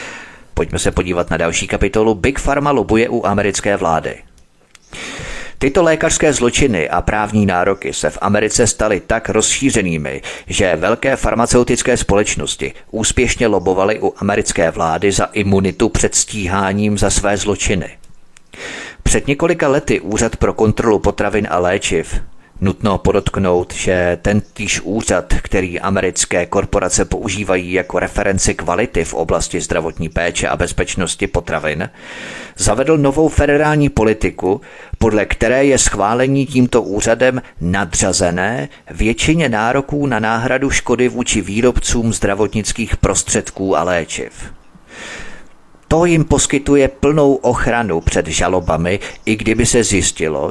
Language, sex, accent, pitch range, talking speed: Czech, male, native, 95-120 Hz, 120 wpm